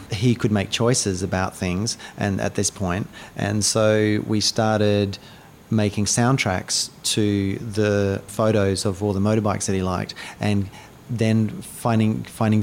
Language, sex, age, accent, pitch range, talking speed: English, male, 30-49, Australian, 100-115 Hz, 145 wpm